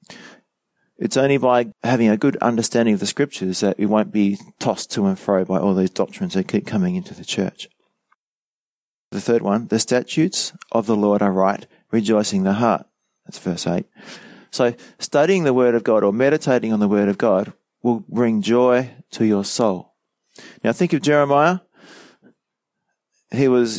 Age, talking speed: 30-49, 175 wpm